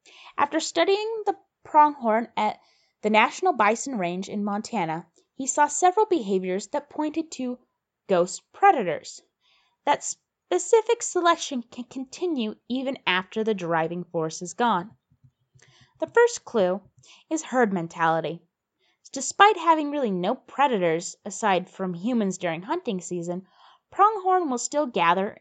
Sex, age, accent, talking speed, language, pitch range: female, 20-39, American, 125 wpm, English, 185-300 Hz